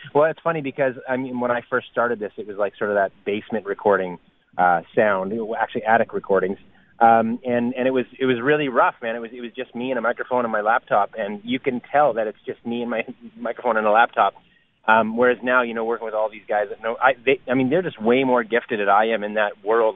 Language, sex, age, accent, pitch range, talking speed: English, male, 30-49, American, 110-125 Hz, 260 wpm